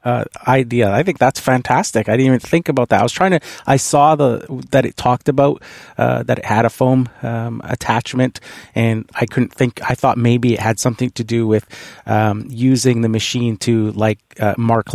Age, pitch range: 30-49, 110-135 Hz